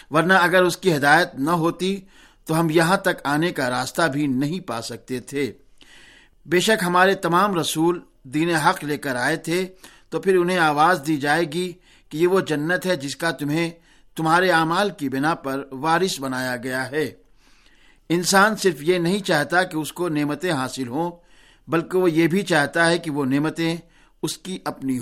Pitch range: 145-180 Hz